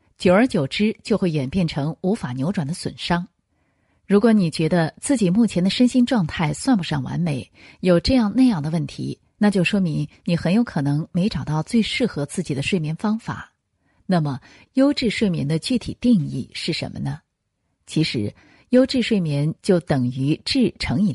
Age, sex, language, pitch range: 30-49, female, Chinese, 145-215 Hz